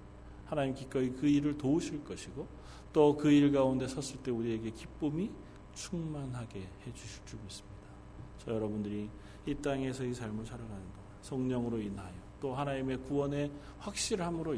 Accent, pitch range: native, 100-130 Hz